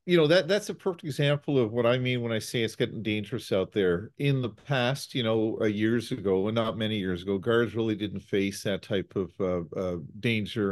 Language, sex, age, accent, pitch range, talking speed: English, male, 50-69, American, 105-145 Hz, 235 wpm